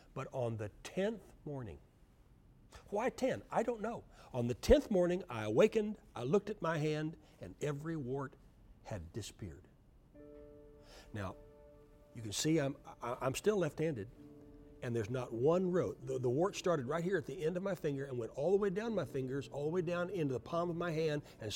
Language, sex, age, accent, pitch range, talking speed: English, male, 60-79, American, 115-170 Hz, 190 wpm